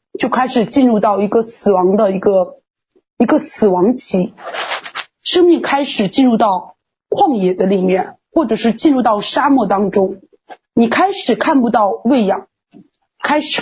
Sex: female